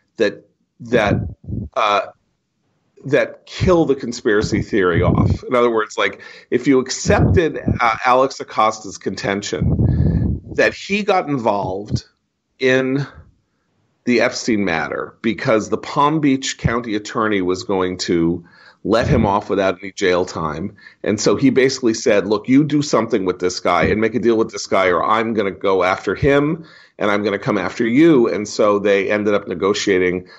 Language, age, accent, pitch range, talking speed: English, 40-59, American, 105-160 Hz, 165 wpm